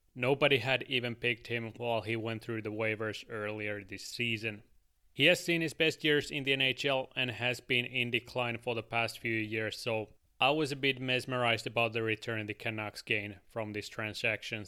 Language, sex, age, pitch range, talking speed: English, male, 30-49, 110-130 Hz, 195 wpm